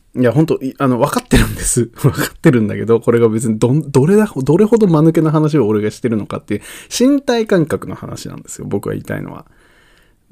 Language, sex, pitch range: Japanese, male, 115-165 Hz